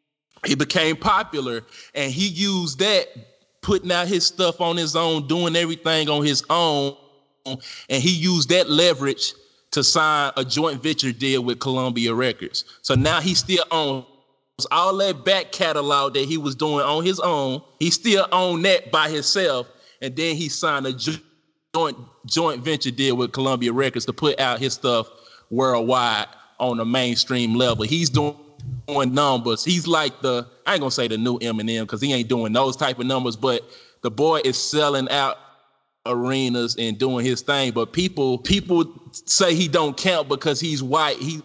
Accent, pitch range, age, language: American, 135-175 Hz, 20-39, English